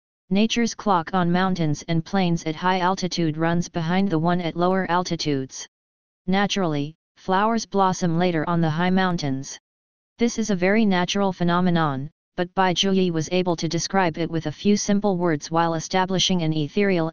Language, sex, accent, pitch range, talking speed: English, female, American, 160-190 Hz, 165 wpm